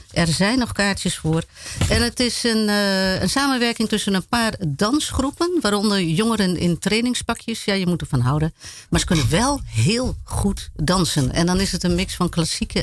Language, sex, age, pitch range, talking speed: Dutch, female, 50-69, 160-230 Hz, 185 wpm